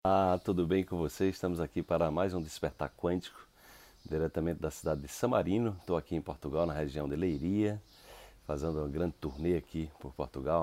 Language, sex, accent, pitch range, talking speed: Portuguese, male, Brazilian, 75-95 Hz, 185 wpm